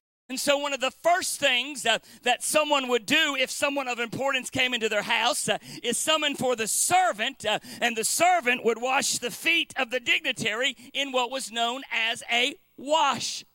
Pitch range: 205-275 Hz